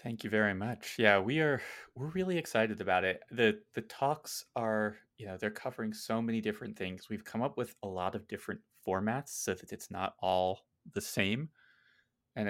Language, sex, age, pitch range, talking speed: English, male, 20-39, 100-120 Hz, 195 wpm